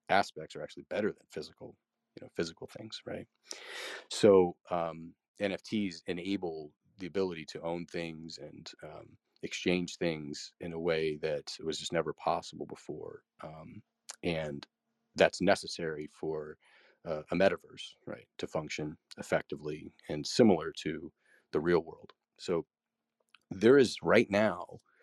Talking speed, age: 135 wpm, 30-49